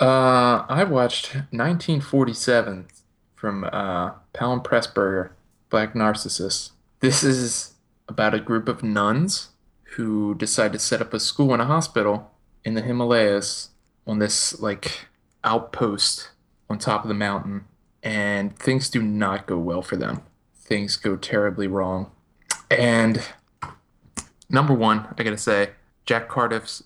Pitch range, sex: 100-120 Hz, male